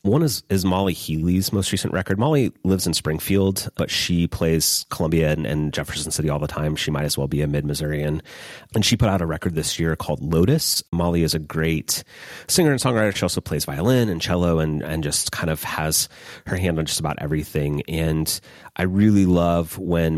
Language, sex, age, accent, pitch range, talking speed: English, male, 30-49, American, 75-95 Hz, 210 wpm